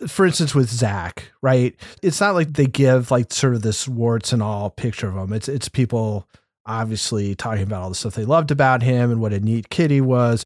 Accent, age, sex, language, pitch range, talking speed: American, 40-59, male, English, 115-140 Hz, 230 wpm